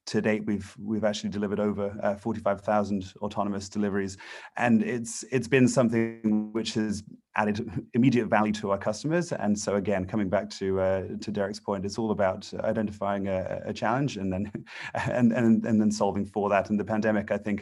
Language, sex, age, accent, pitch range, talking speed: English, male, 30-49, British, 100-110 Hz, 185 wpm